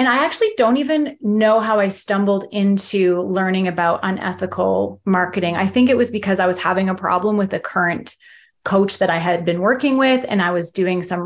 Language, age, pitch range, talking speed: English, 30-49, 185-225 Hz, 210 wpm